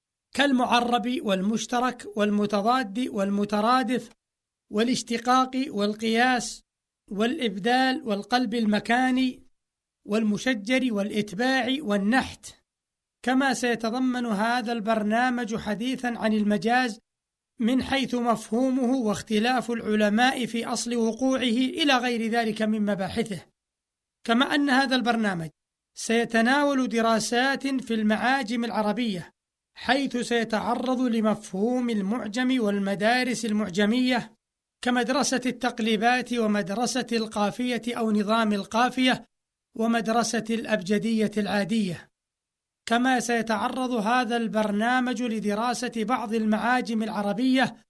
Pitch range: 215-250 Hz